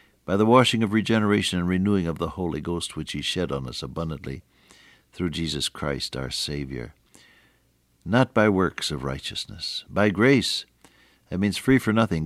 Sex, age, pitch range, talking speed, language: male, 60-79, 85-120 Hz, 165 wpm, English